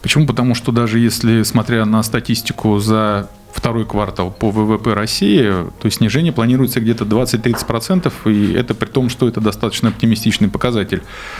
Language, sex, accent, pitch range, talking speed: Russian, male, native, 105-125 Hz, 145 wpm